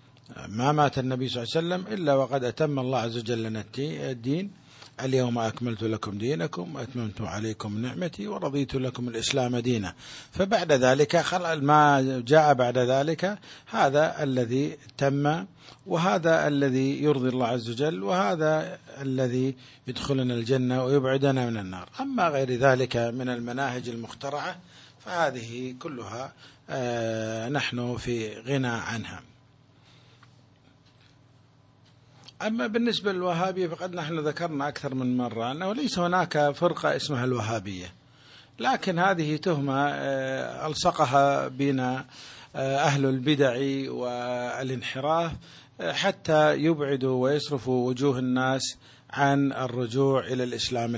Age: 50-69